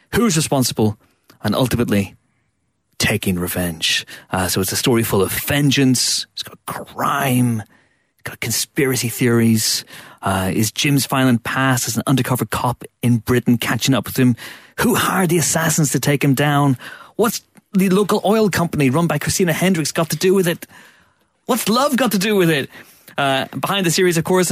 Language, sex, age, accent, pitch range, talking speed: English, male, 30-49, British, 110-145 Hz, 175 wpm